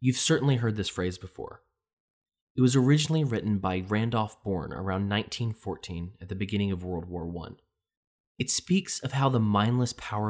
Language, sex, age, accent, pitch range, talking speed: English, male, 20-39, American, 95-115 Hz, 170 wpm